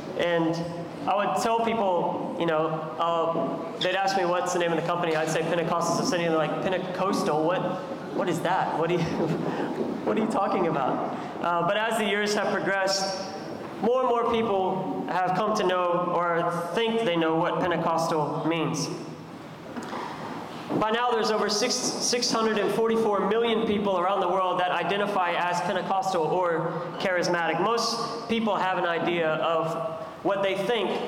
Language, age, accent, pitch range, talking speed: English, 20-39, American, 165-195 Hz, 165 wpm